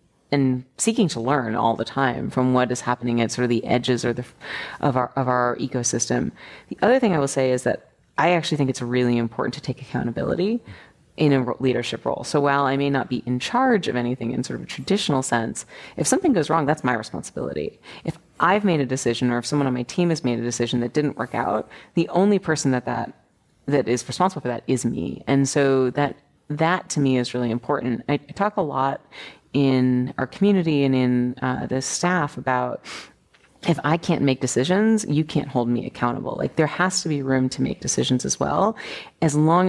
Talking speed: 220 wpm